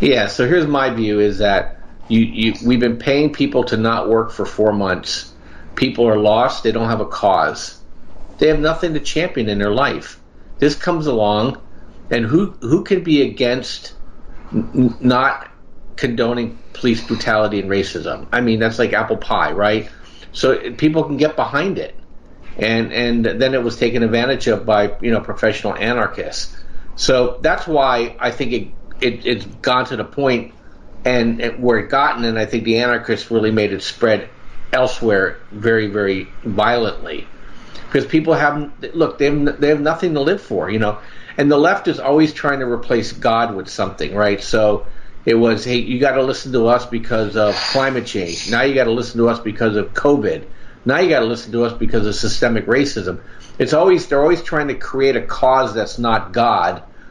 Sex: male